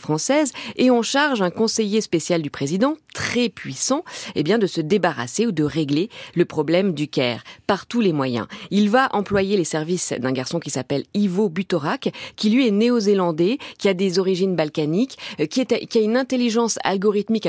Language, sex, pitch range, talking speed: French, female, 160-215 Hz, 185 wpm